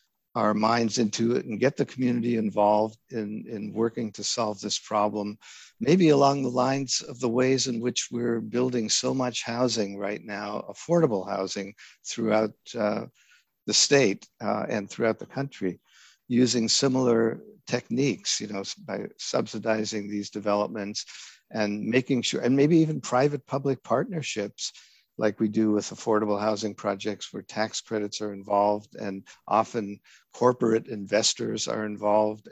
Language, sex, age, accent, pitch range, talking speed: English, male, 50-69, American, 105-120 Hz, 145 wpm